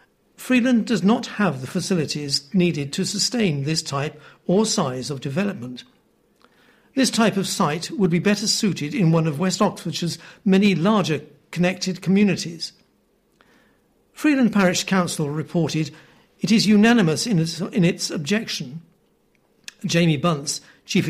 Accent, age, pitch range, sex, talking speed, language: British, 60-79, 160-205 Hz, male, 130 wpm, English